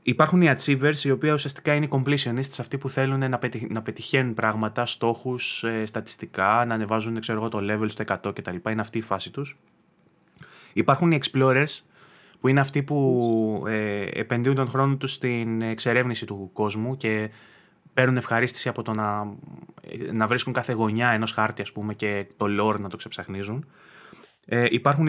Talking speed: 170 wpm